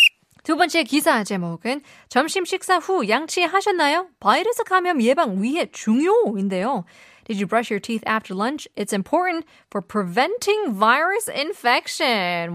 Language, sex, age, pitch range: Korean, female, 20-39, 200-295 Hz